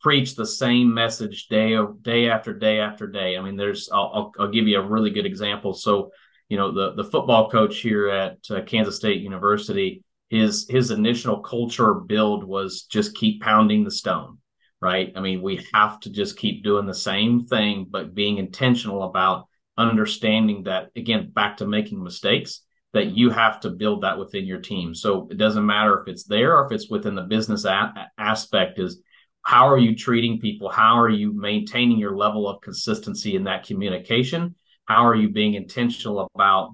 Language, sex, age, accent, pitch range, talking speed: English, male, 40-59, American, 100-115 Hz, 185 wpm